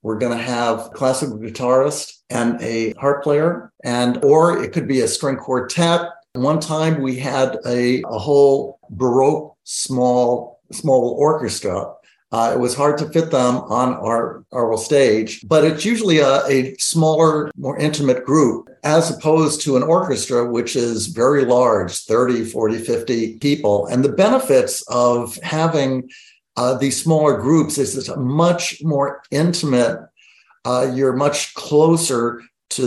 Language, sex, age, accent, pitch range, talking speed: English, male, 60-79, American, 120-155 Hz, 150 wpm